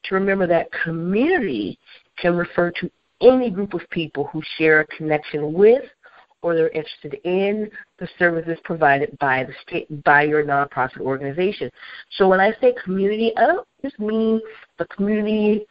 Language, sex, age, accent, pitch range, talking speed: English, female, 50-69, American, 155-205 Hz, 155 wpm